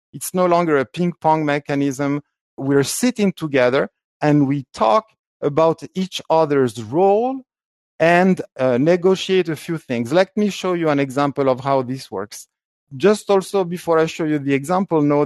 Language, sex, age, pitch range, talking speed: English, male, 50-69, 130-170 Hz, 165 wpm